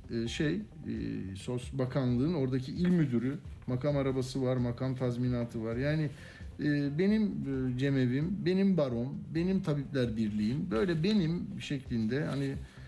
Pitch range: 120-150 Hz